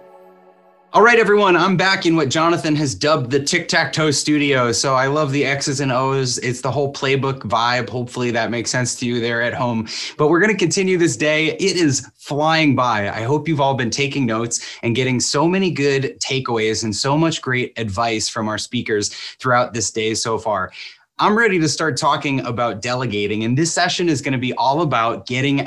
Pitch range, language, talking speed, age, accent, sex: 120-150 Hz, English, 200 wpm, 20-39, American, male